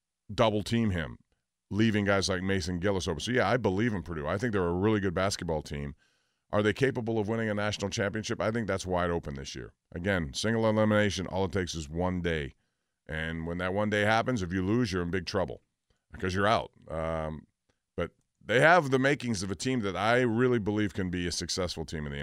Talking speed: 220 wpm